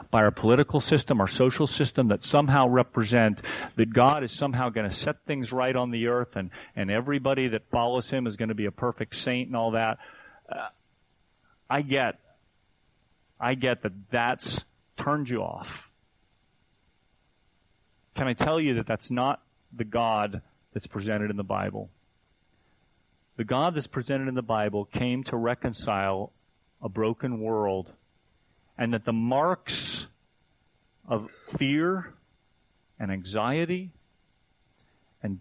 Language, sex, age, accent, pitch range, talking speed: English, male, 40-59, American, 110-145 Hz, 140 wpm